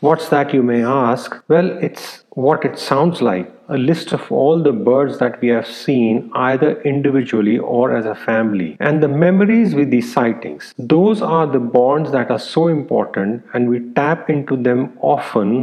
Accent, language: Indian, English